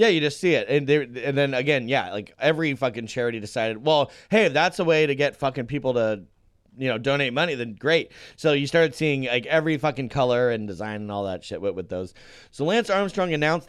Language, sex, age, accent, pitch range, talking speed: English, male, 30-49, American, 125-165 Hz, 225 wpm